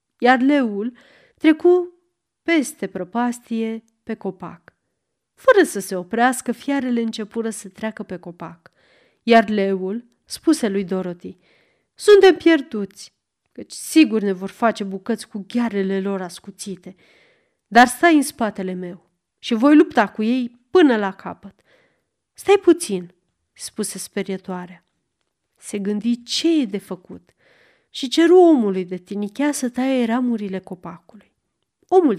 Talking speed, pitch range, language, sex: 125 wpm, 190-270 Hz, Romanian, female